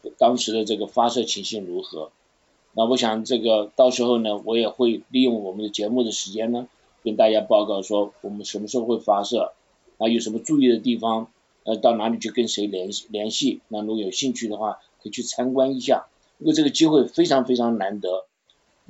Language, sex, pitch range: Chinese, male, 115-145 Hz